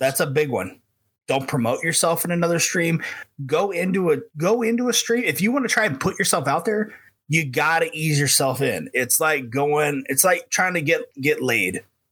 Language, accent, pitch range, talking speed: English, American, 135-190 Hz, 210 wpm